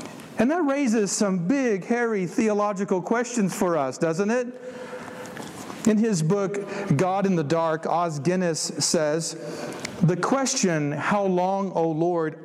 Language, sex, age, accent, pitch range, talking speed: English, male, 50-69, American, 155-210 Hz, 135 wpm